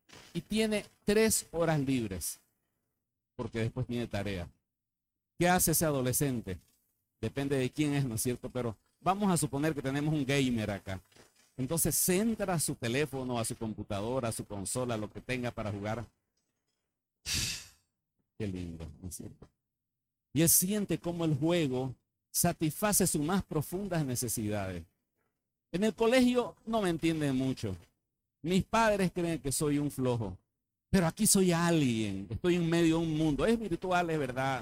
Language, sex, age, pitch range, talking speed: Spanish, male, 50-69, 115-175 Hz, 160 wpm